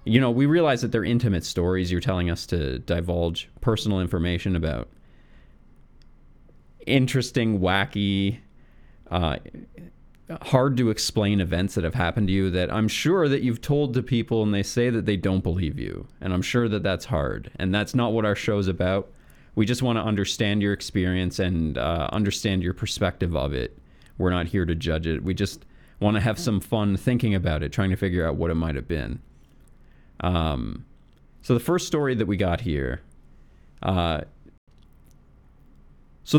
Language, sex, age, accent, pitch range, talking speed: English, male, 30-49, American, 85-120 Hz, 175 wpm